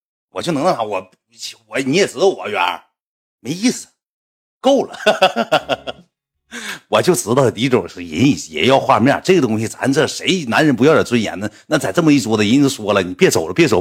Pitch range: 110-160 Hz